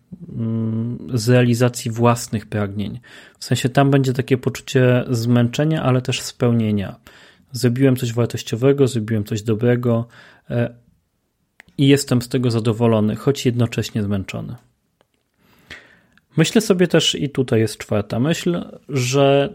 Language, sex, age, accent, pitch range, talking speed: Polish, male, 30-49, native, 120-140 Hz, 115 wpm